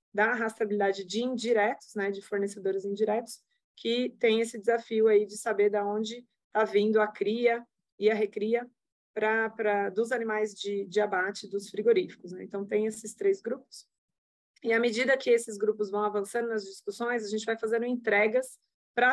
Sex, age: female, 20-39